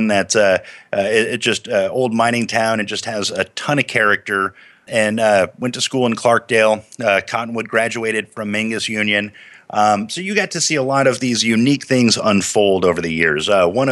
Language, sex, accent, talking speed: English, male, American, 205 wpm